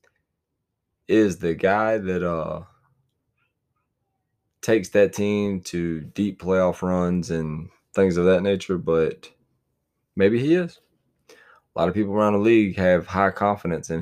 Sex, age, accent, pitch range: male, 20-39, American, 85-105 Hz